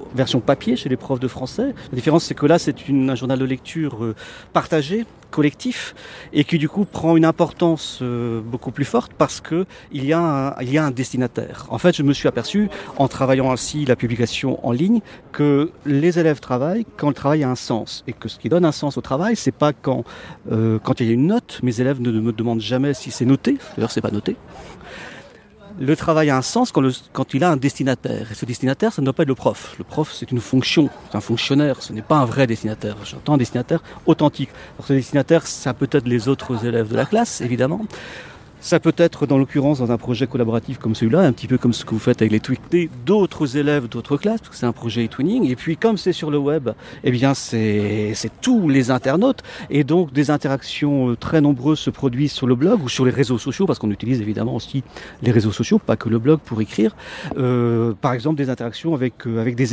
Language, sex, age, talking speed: French, male, 40-59, 235 wpm